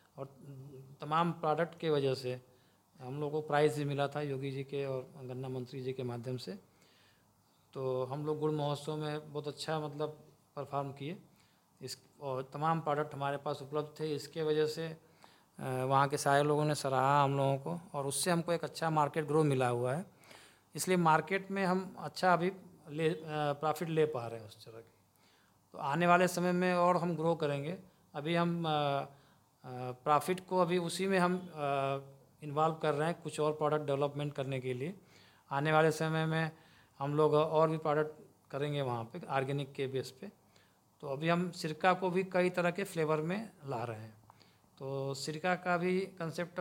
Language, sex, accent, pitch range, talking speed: Hindi, male, native, 135-165 Hz, 185 wpm